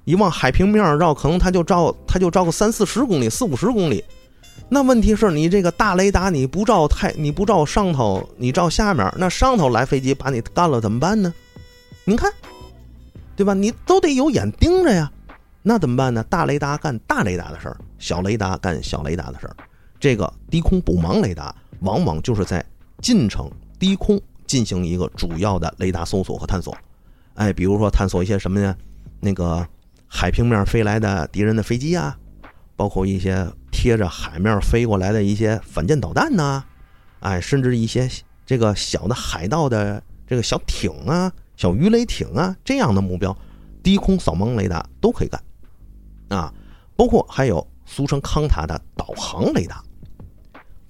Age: 30-49